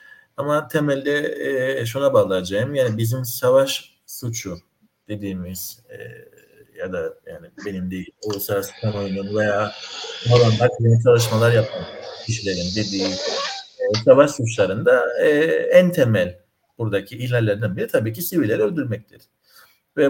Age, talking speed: 50-69, 110 wpm